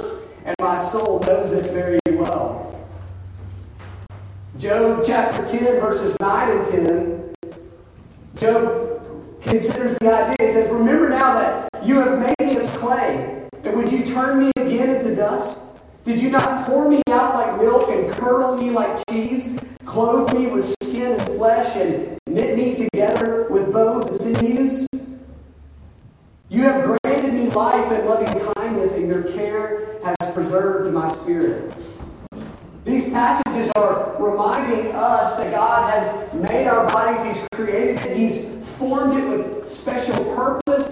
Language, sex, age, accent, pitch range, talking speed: English, male, 40-59, American, 210-265 Hz, 140 wpm